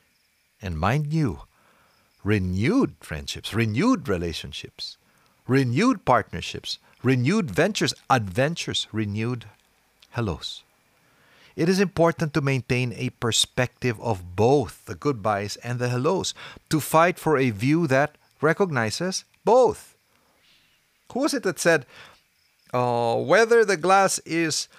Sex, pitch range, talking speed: male, 120-170 Hz, 110 wpm